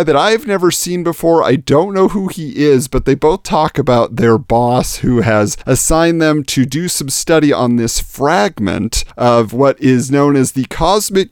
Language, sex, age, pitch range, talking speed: English, male, 40-59, 115-170 Hz, 190 wpm